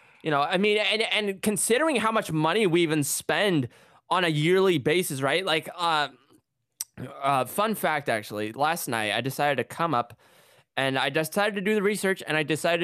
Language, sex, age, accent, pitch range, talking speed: English, male, 10-29, American, 125-185 Hz, 190 wpm